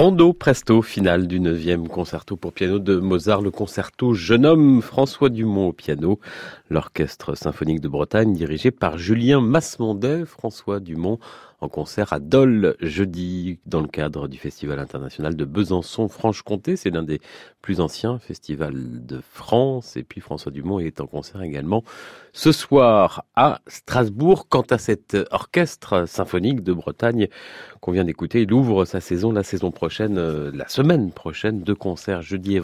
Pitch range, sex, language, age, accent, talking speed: 85-125 Hz, male, French, 40-59, French, 160 wpm